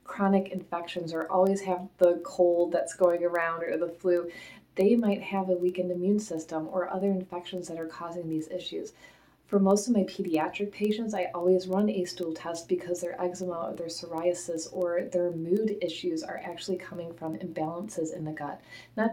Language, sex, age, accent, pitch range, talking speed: English, female, 30-49, American, 170-195 Hz, 185 wpm